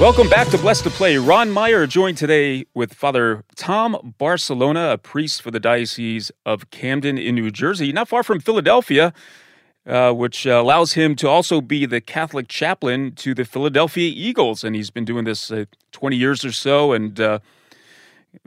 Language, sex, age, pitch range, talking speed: English, male, 30-49, 115-150 Hz, 180 wpm